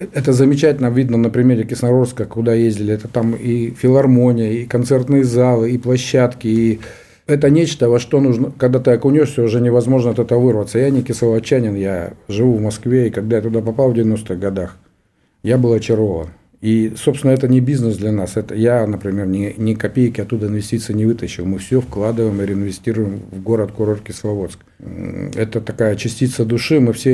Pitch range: 110-125 Hz